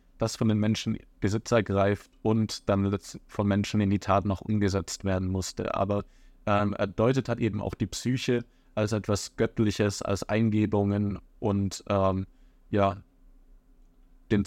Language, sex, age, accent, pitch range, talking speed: German, male, 20-39, German, 95-110 Hz, 140 wpm